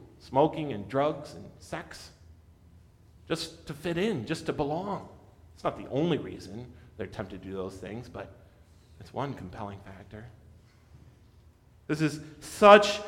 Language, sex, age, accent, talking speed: English, male, 40-59, American, 140 wpm